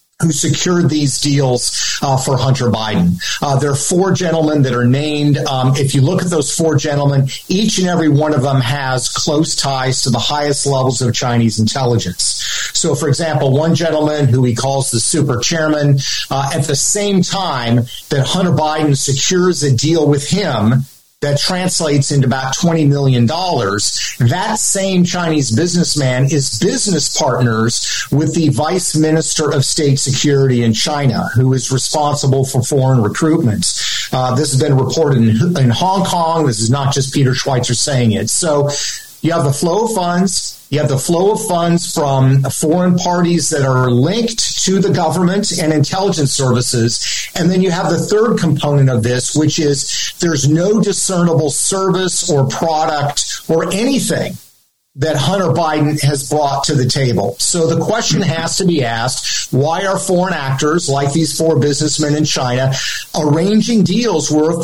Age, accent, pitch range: 40-59, American, 135-170 Hz